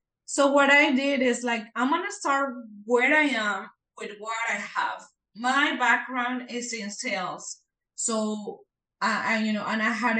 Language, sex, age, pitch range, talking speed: English, female, 20-39, 210-255 Hz, 170 wpm